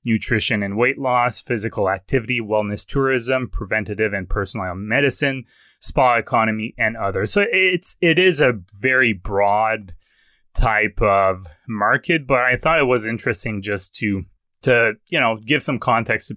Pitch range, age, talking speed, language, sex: 105-135 Hz, 20-39, 150 wpm, English, male